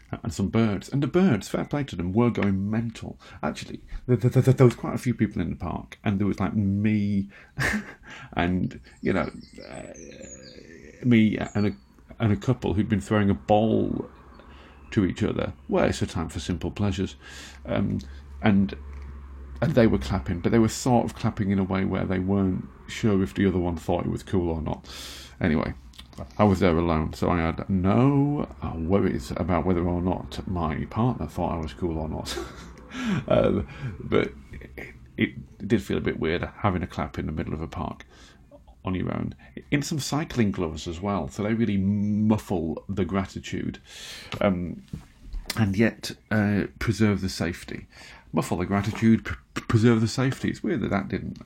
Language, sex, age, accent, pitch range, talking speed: English, male, 40-59, British, 85-110 Hz, 180 wpm